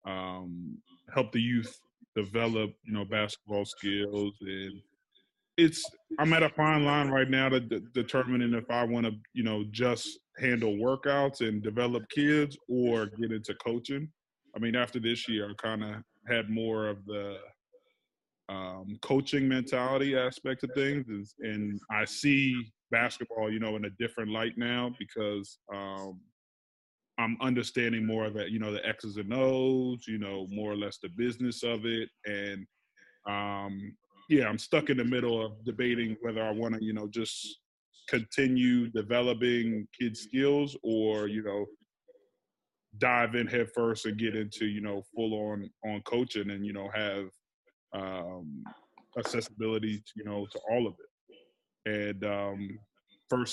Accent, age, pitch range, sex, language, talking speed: American, 20-39, 105-125 Hz, male, English, 155 wpm